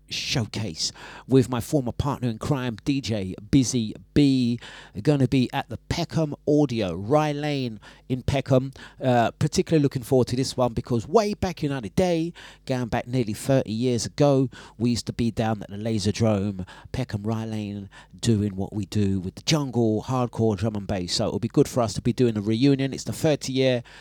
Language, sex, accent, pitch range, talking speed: English, male, British, 110-140 Hz, 195 wpm